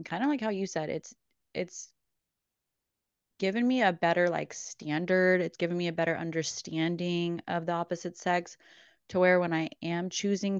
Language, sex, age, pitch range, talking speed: English, female, 20-39, 155-175 Hz, 170 wpm